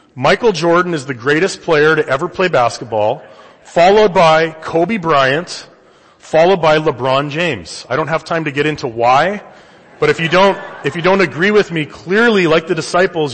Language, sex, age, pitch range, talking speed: English, male, 30-49, 130-180 Hz, 180 wpm